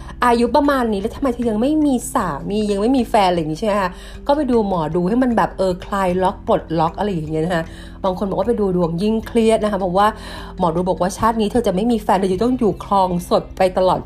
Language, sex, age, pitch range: Thai, female, 30-49, 175-240 Hz